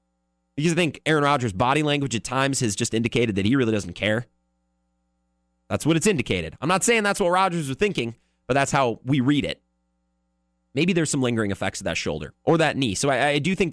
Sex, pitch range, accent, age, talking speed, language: male, 95-150 Hz, American, 30-49, 225 wpm, English